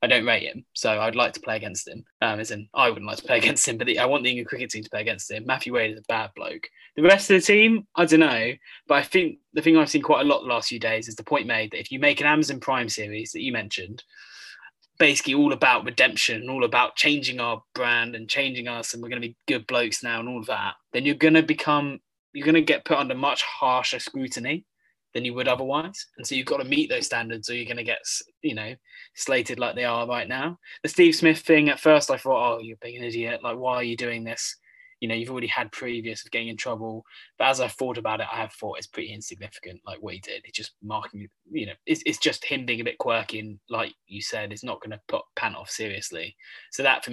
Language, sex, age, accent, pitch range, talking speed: English, male, 20-39, British, 115-160 Hz, 270 wpm